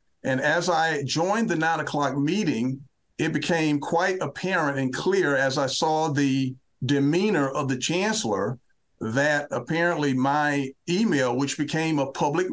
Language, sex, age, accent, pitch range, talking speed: English, male, 50-69, American, 135-160 Hz, 145 wpm